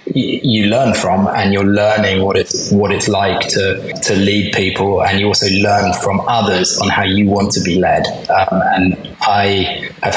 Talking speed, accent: 190 wpm, British